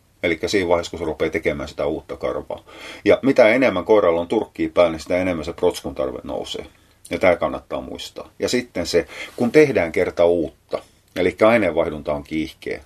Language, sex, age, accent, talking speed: Finnish, male, 30-49, native, 180 wpm